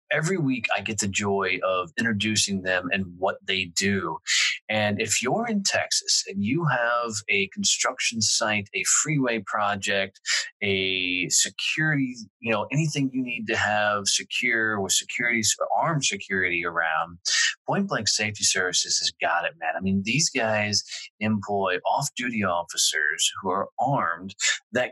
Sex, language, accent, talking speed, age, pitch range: male, English, American, 145 wpm, 30-49, 105-140 Hz